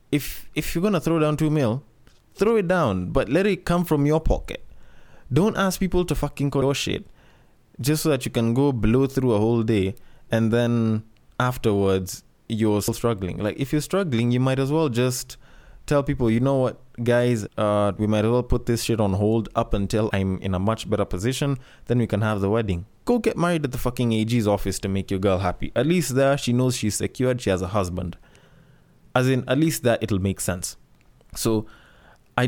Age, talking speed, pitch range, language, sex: 20-39, 215 wpm, 105-135 Hz, English, male